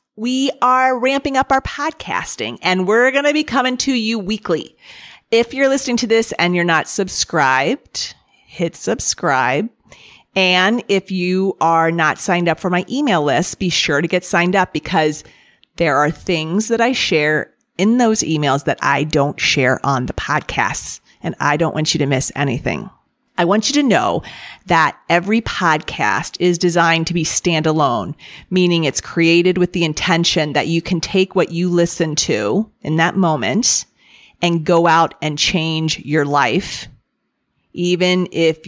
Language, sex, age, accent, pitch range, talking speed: English, female, 40-59, American, 155-195 Hz, 165 wpm